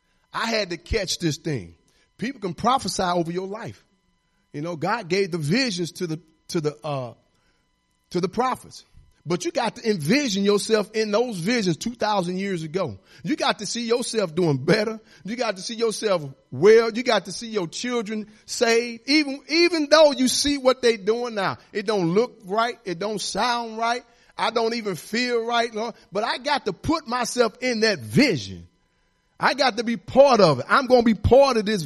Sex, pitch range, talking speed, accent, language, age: male, 175-245 Hz, 200 wpm, American, English, 40-59